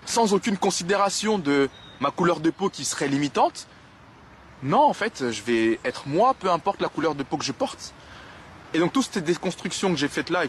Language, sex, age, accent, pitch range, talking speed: French, male, 20-39, French, 120-170 Hz, 210 wpm